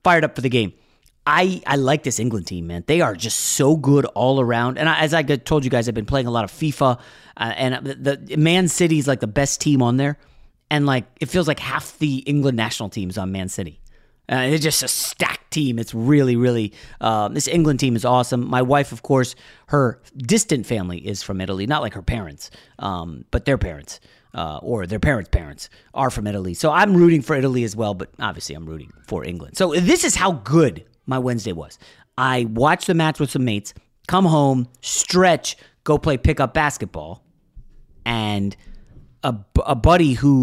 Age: 30-49